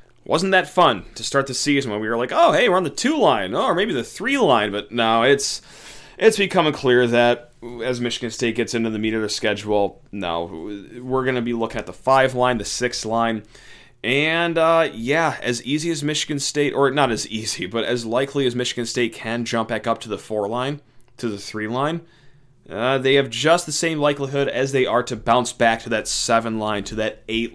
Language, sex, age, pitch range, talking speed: English, male, 30-49, 110-135 Hz, 225 wpm